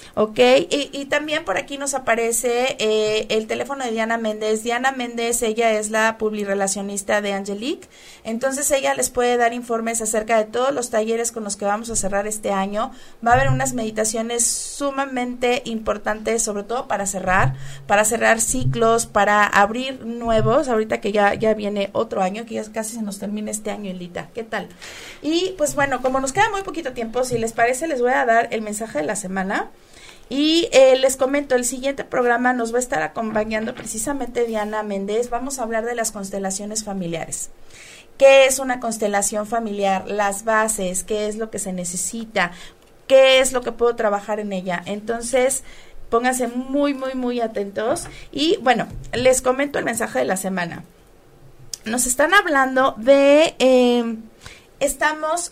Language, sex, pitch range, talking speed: Spanish, female, 210-255 Hz, 175 wpm